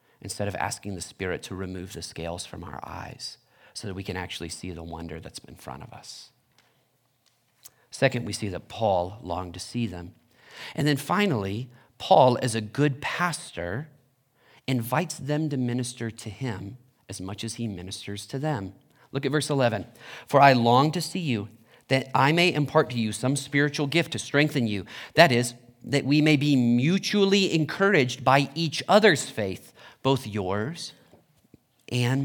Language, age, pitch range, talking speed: English, 40-59, 110-145 Hz, 170 wpm